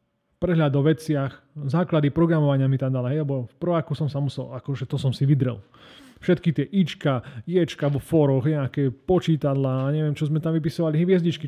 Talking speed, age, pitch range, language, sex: 180 wpm, 30-49, 130-160 Hz, Slovak, male